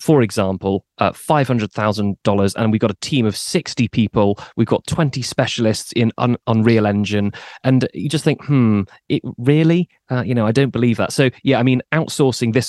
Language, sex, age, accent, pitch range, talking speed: English, male, 30-49, British, 105-125 Hz, 190 wpm